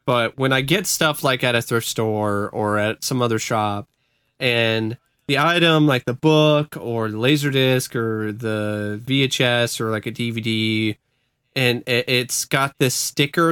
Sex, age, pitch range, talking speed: male, 20-39, 120-150 Hz, 160 wpm